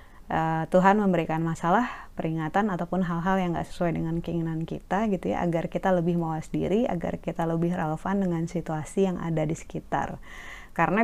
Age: 20-39